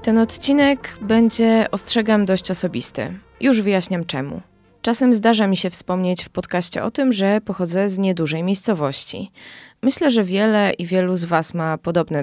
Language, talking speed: Polish, 155 wpm